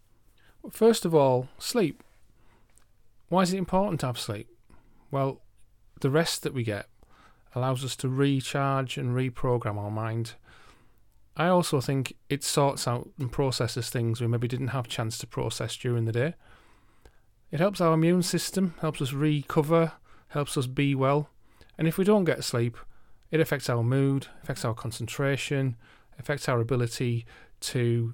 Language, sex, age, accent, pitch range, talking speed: English, male, 40-59, British, 115-145 Hz, 160 wpm